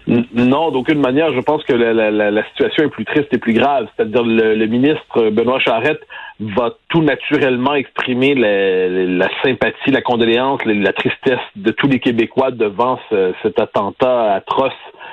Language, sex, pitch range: French, male, 125-180 Hz